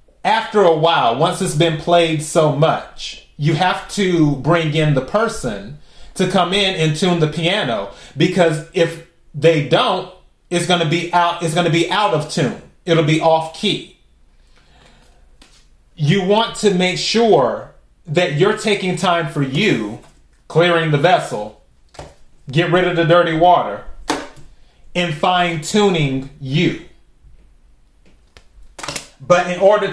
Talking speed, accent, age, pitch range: 140 wpm, American, 30-49, 145-185 Hz